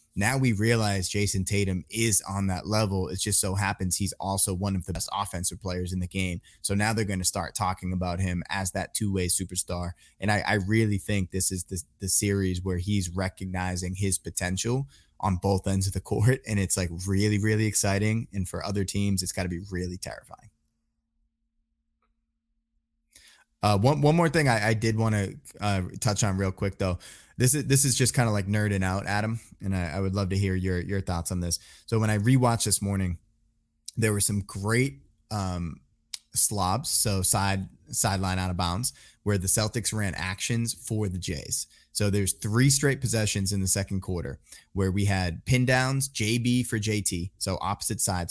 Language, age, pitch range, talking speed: English, 20-39, 90-105 Hz, 195 wpm